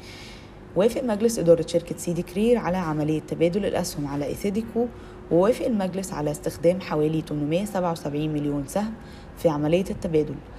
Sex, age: female, 20-39